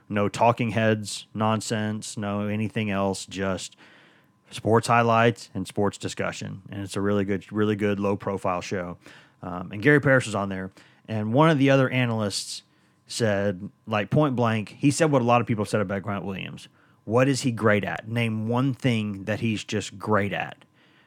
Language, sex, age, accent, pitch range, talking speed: English, male, 30-49, American, 105-130 Hz, 180 wpm